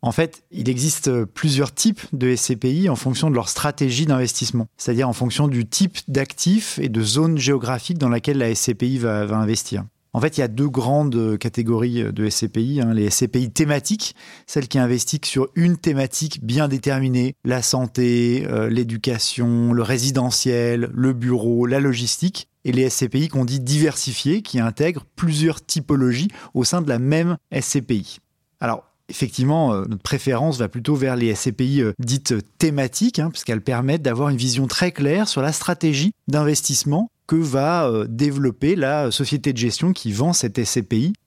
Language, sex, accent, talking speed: French, male, French, 165 wpm